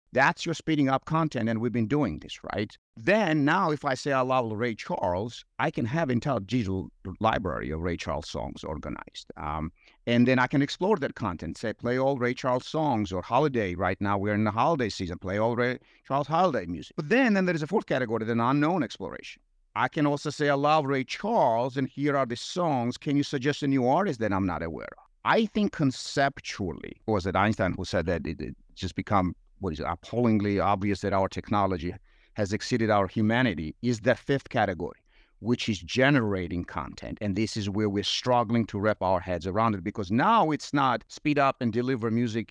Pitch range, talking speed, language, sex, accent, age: 100-135 Hz, 210 wpm, English, male, American, 50-69